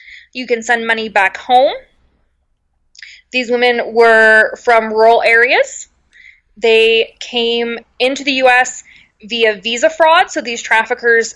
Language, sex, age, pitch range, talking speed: English, female, 20-39, 225-310 Hz, 120 wpm